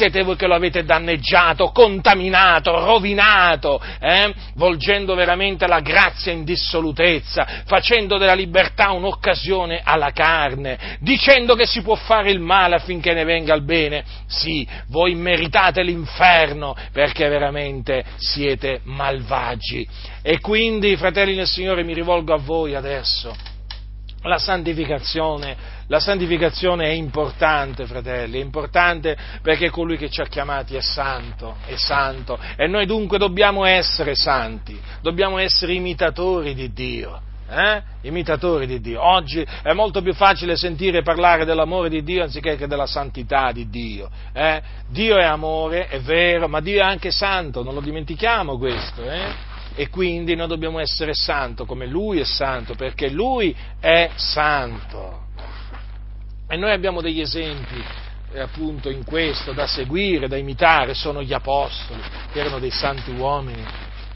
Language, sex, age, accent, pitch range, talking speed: Italian, male, 40-59, native, 130-175 Hz, 140 wpm